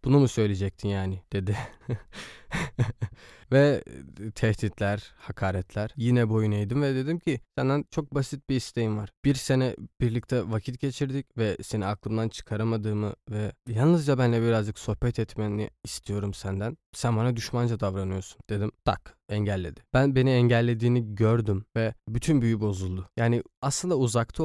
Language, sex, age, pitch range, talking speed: Turkish, male, 20-39, 105-130 Hz, 135 wpm